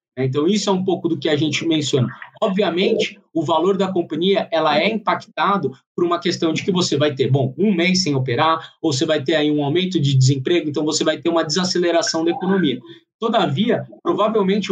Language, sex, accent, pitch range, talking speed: Portuguese, male, Brazilian, 160-200 Hz, 205 wpm